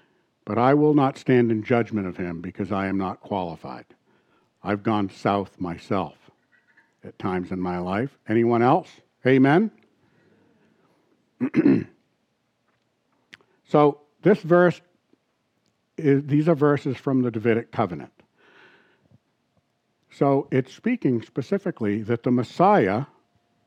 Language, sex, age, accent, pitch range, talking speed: English, male, 60-79, American, 115-165 Hz, 110 wpm